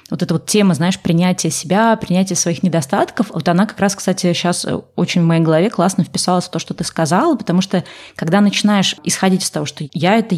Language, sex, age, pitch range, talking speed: Russian, female, 20-39, 170-200 Hz, 215 wpm